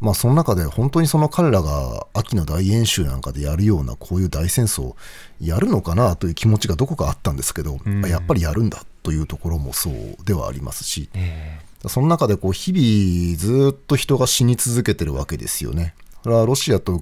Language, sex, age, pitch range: Japanese, male, 40-59, 80-115 Hz